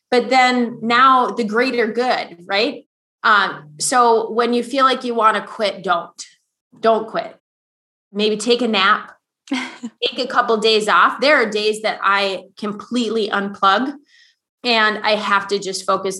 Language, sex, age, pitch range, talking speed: English, female, 20-39, 195-240 Hz, 160 wpm